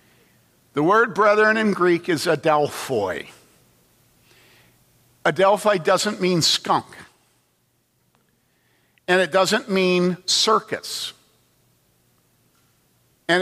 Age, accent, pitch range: 50-69, American, 155-210 Hz